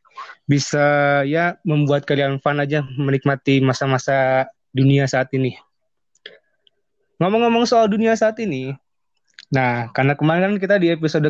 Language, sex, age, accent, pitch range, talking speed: Indonesian, male, 20-39, native, 135-170 Hz, 115 wpm